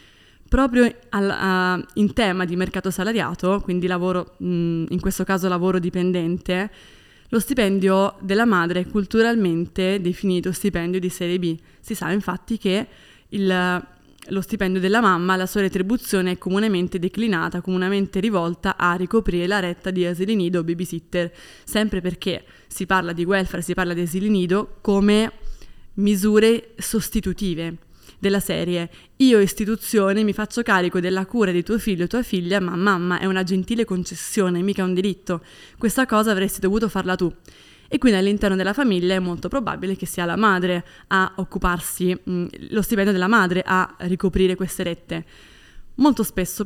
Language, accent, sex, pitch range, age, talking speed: Italian, native, female, 180-210 Hz, 20-39, 155 wpm